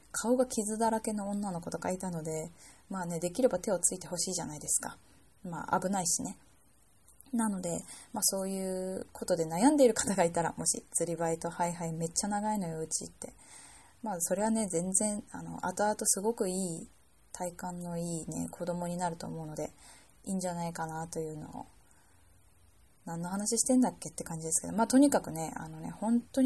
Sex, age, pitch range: female, 20-39, 165-215 Hz